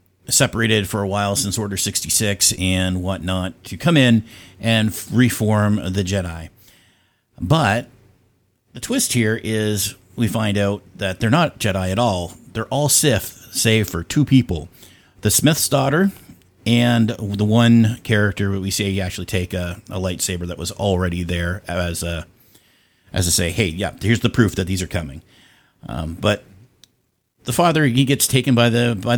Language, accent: English, American